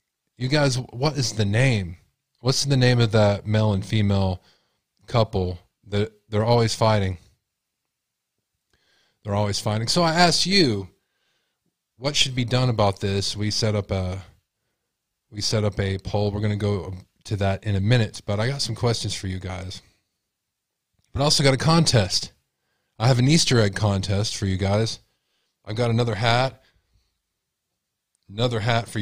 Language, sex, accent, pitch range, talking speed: English, male, American, 100-120 Hz, 165 wpm